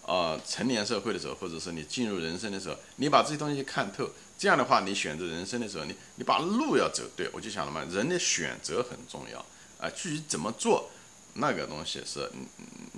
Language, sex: Chinese, male